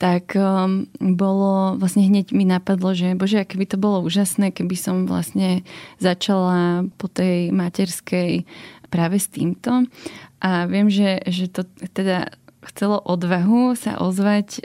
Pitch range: 180-205 Hz